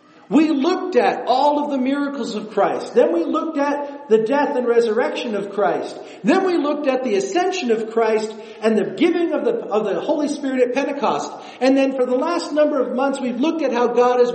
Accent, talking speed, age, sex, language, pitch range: American, 215 wpm, 50-69, male, English, 220-315 Hz